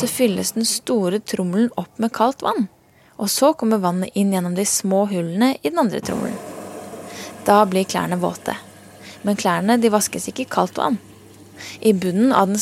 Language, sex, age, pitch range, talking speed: English, female, 20-39, 170-220 Hz, 175 wpm